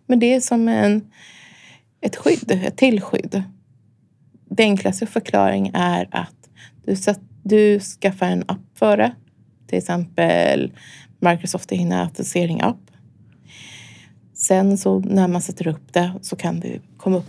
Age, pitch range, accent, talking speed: 20-39, 170-200 Hz, native, 130 wpm